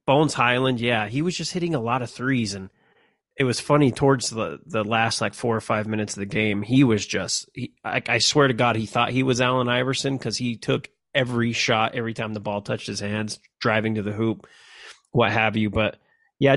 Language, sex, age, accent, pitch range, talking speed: English, male, 30-49, American, 105-130 Hz, 230 wpm